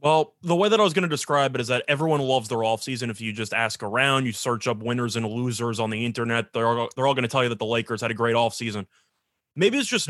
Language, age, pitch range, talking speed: English, 20-39, 115-155 Hz, 290 wpm